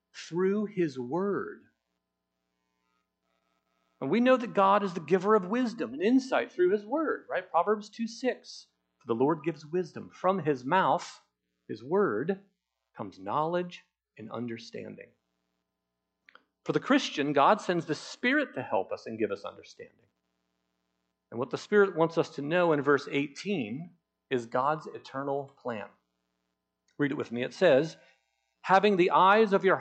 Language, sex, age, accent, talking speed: English, male, 40-59, American, 155 wpm